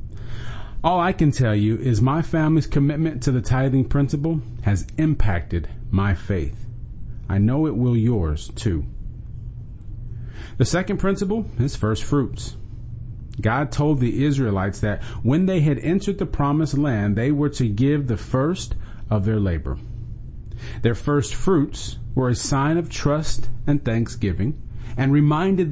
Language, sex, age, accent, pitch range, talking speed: English, male, 40-59, American, 110-145 Hz, 145 wpm